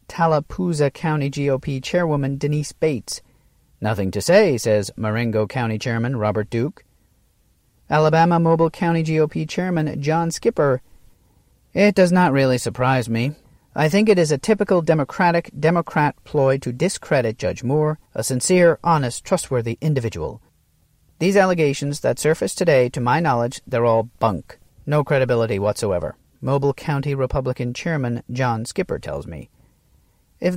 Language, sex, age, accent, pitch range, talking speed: English, male, 40-59, American, 120-165 Hz, 135 wpm